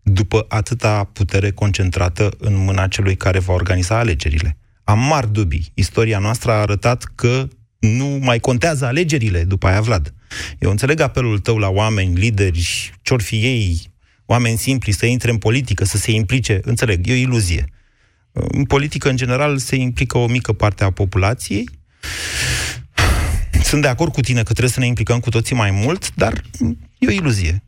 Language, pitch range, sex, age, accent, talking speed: Romanian, 95-120 Hz, male, 30-49, native, 170 wpm